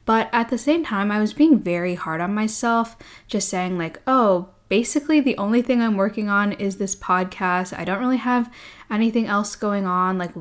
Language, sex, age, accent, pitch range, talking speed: English, female, 10-29, American, 180-235 Hz, 200 wpm